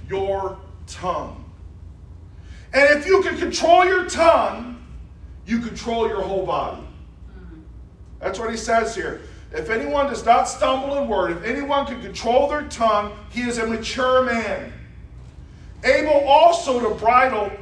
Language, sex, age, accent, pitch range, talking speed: English, male, 40-59, American, 215-300 Hz, 140 wpm